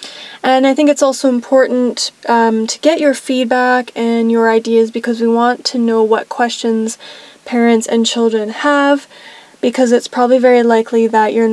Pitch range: 220-255 Hz